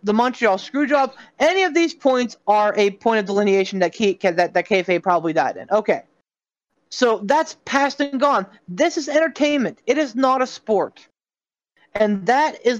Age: 20-39